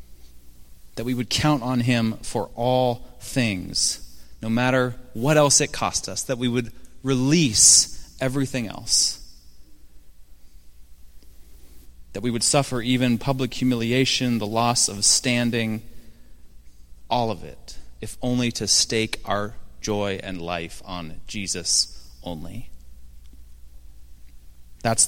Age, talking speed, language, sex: 30-49, 115 wpm, English, male